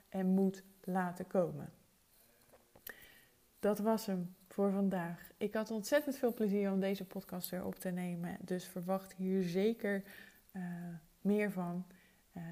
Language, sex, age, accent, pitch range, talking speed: Dutch, female, 20-39, Dutch, 180-210 Hz, 140 wpm